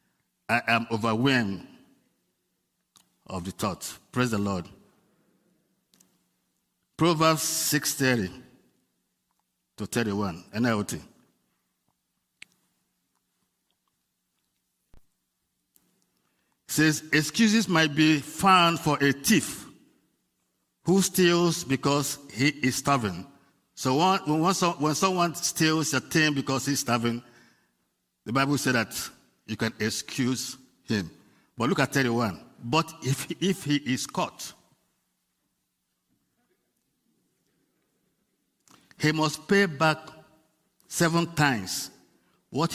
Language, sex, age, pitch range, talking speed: English, male, 50-69, 120-160 Hz, 90 wpm